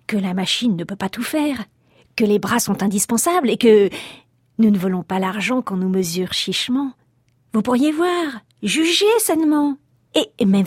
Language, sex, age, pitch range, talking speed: French, female, 40-59, 195-250 Hz, 175 wpm